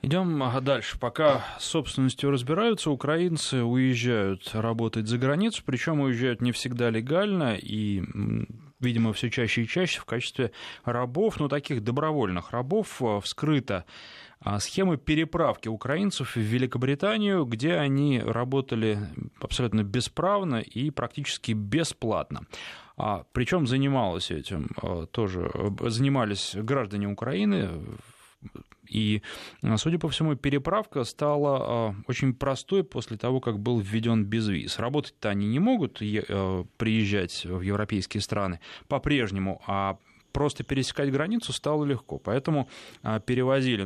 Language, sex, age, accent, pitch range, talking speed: Russian, male, 20-39, native, 110-140 Hz, 110 wpm